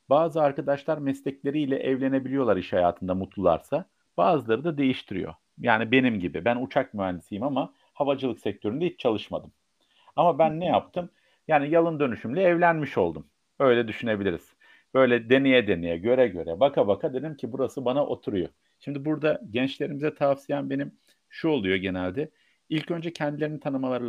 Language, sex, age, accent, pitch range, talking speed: Turkish, male, 50-69, native, 115-155 Hz, 140 wpm